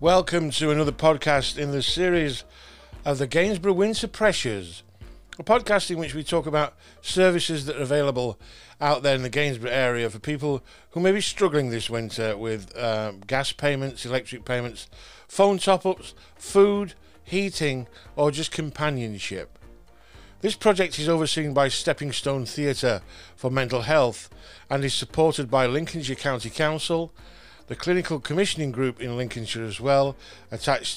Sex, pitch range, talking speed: male, 115-155 Hz, 150 wpm